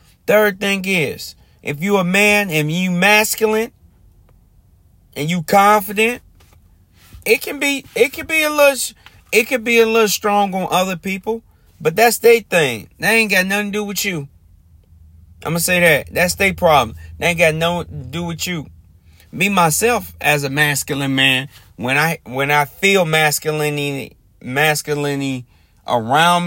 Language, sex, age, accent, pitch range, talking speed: English, male, 30-49, American, 130-190 Hz, 160 wpm